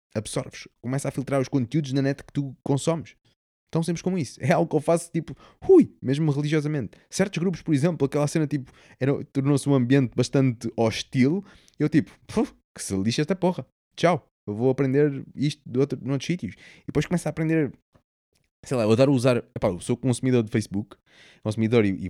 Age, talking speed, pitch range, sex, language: 20-39, 180 wpm, 110-145 Hz, male, Portuguese